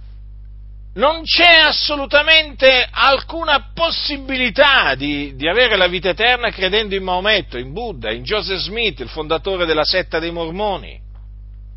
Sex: male